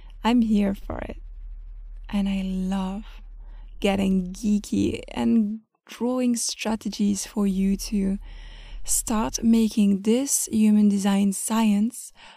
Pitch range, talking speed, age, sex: 200-235 Hz, 100 wpm, 20-39, female